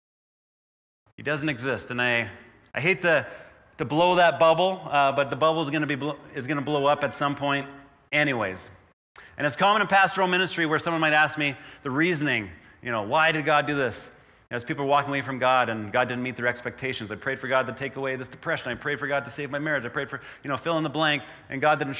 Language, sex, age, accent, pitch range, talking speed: English, male, 30-49, American, 135-165 Hz, 245 wpm